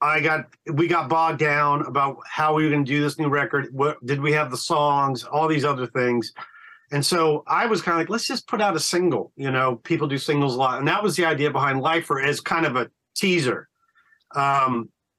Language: English